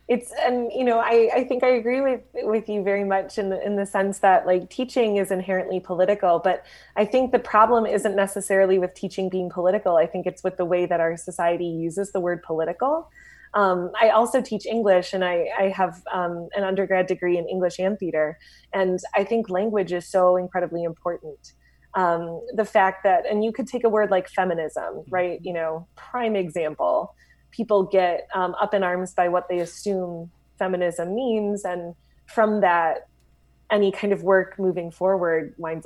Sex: female